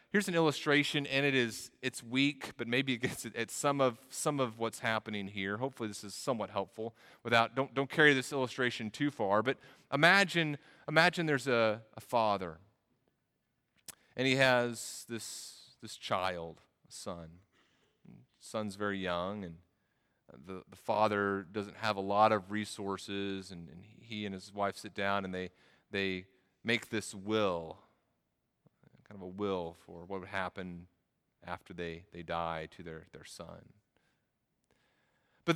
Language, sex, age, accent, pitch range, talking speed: English, male, 30-49, American, 105-140 Hz, 155 wpm